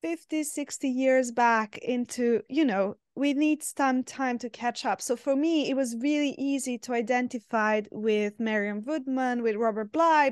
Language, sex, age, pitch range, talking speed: English, female, 20-39, 235-280 Hz, 170 wpm